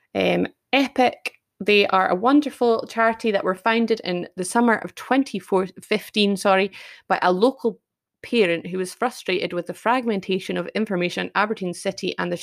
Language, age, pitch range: English, 20-39, 190-245 Hz